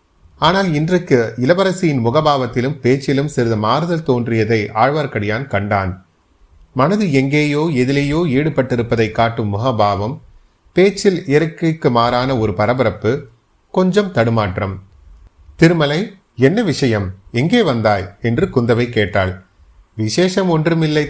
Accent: native